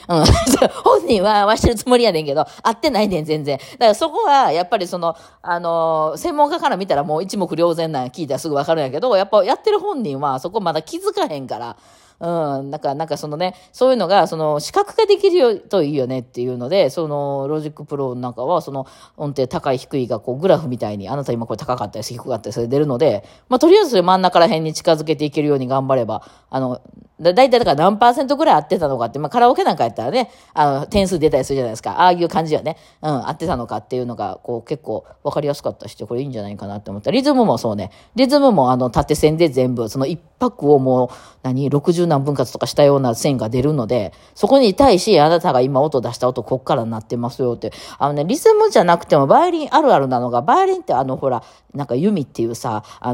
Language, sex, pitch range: Japanese, female, 130-195 Hz